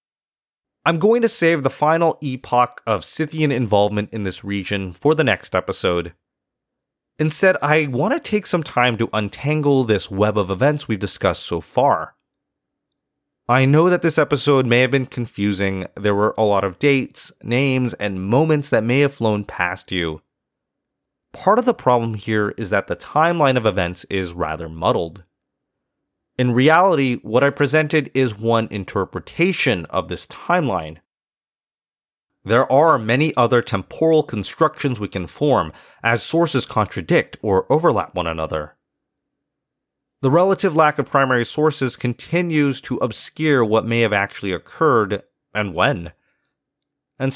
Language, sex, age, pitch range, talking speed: English, male, 30-49, 100-150 Hz, 145 wpm